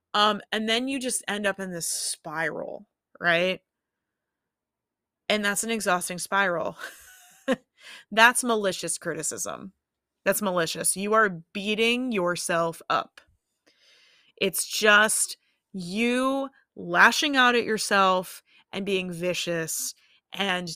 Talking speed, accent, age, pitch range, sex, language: 105 wpm, American, 20-39, 185-245 Hz, female, English